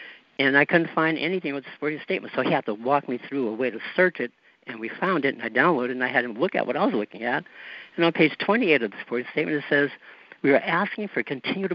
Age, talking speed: 60-79, 280 wpm